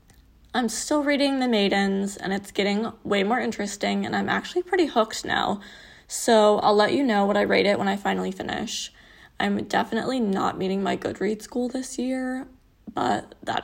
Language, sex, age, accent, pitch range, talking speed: English, female, 20-39, American, 190-245 Hz, 180 wpm